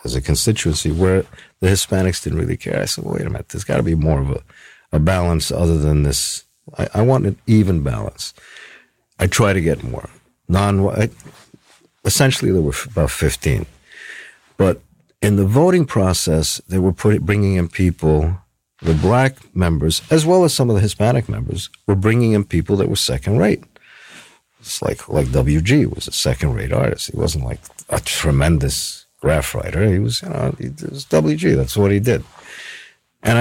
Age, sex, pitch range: 50-69, male, 80-110 Hz